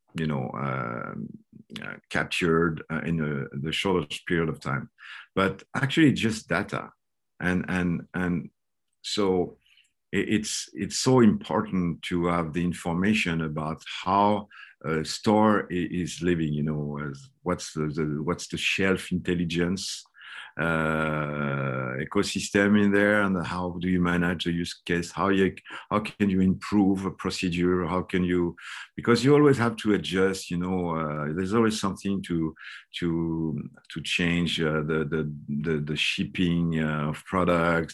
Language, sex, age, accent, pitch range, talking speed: English, male, 50-69, French, 80-100 Hz, 145 wpm